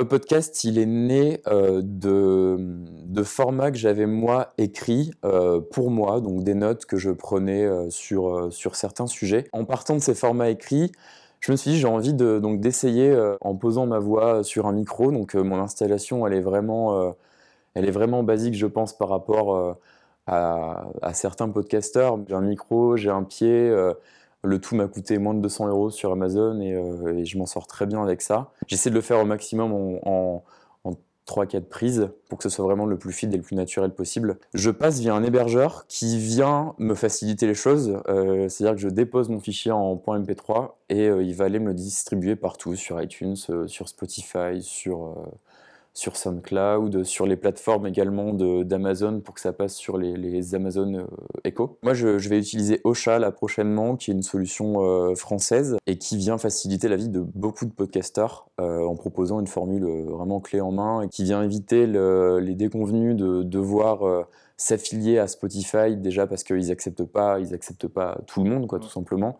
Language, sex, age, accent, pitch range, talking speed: French, male, 20-39, French, 95-110 Hz, 195 wpm